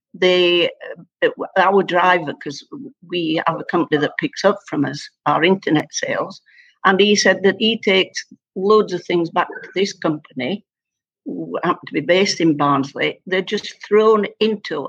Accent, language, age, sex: British, English, 60-79, female